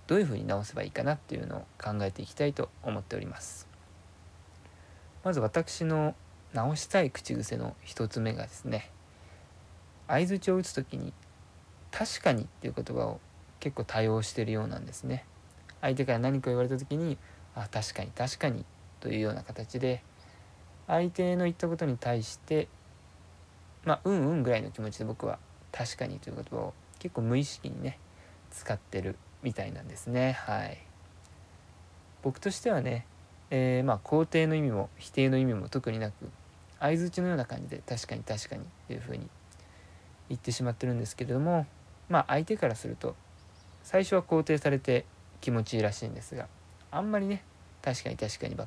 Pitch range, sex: 90-135 Hz, male